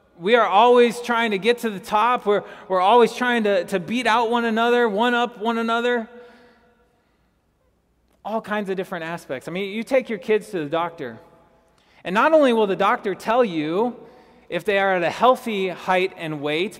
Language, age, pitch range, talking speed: English, 20-39, 175-230 Hz, 195 wpm